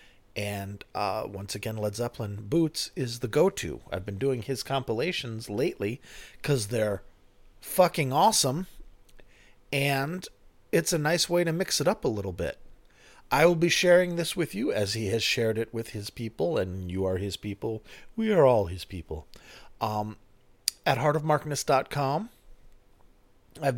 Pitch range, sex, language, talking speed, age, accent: 105-140 Hz, male, English, 155 wpm, 40-59, American